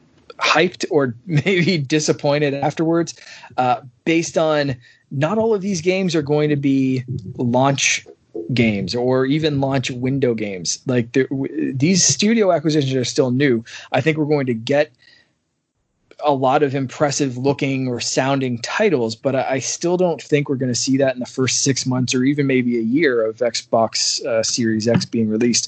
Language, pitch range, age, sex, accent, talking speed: English, 125-155 Hz, 20-39, male, American, 170 wpm